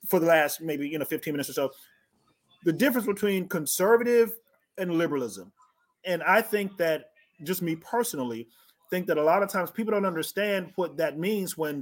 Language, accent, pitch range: English, American, 160-210 Hz